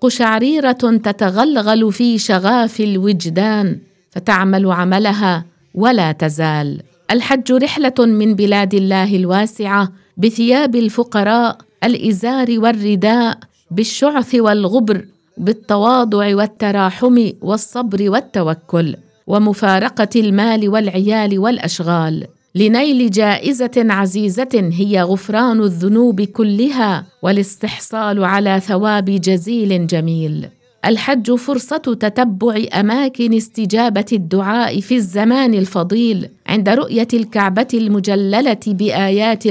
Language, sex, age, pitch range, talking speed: English, female, 50-69, 195-235 Hz, 85 wpm